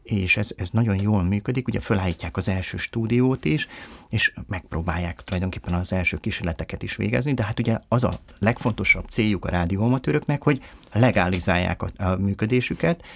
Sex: male